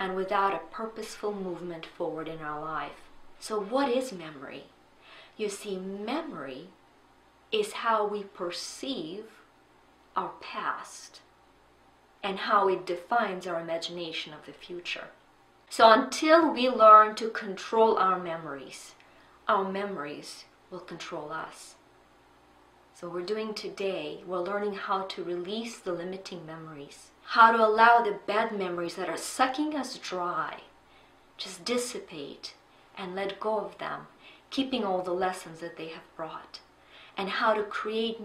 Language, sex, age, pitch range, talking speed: English, female, 30-49, 175-225 Hz, 135 wpm